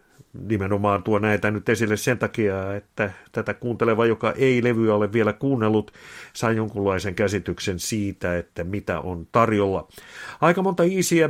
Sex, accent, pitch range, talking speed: male, native, 100-125 Hz, 145 wpm